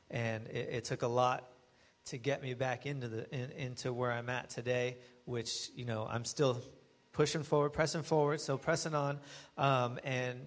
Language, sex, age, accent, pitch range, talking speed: English, male, 30-49, American, 120-145 Hz, 185 wpm